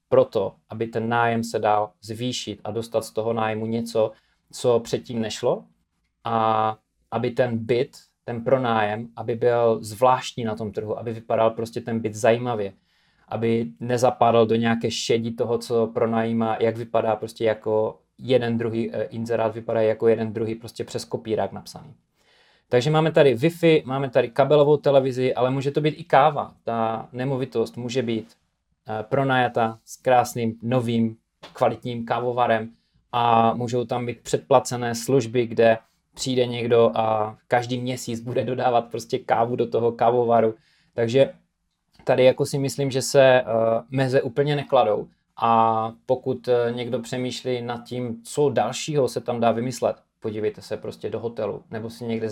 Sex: male